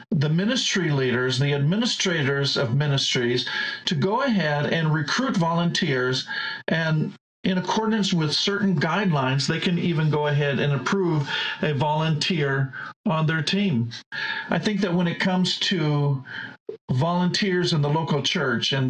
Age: 50-69